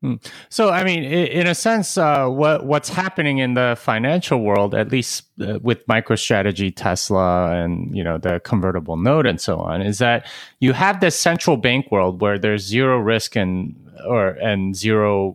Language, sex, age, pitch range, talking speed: English, male, 30-49, 100-140 Hz, 175 wpm